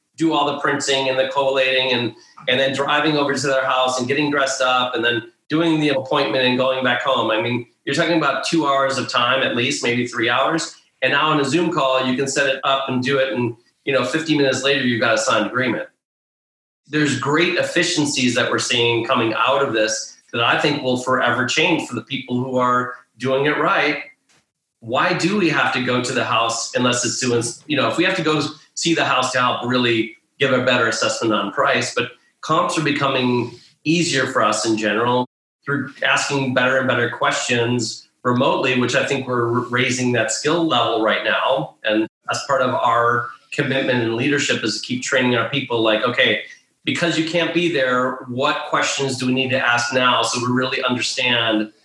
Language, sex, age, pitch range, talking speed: English, male, 30-49, 120-145 Hz, 210 wpm